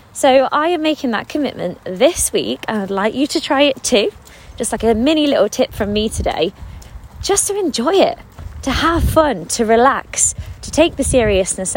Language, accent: English, British